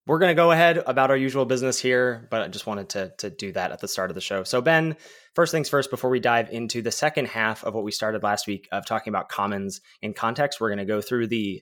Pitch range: 105-135 Hz